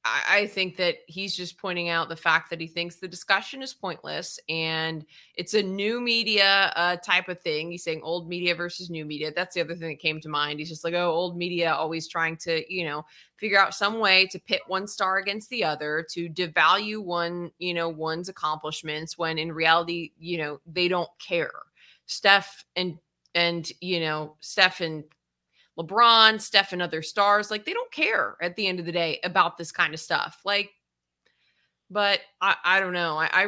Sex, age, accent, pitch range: female, 20-39, American, 165-200 Hz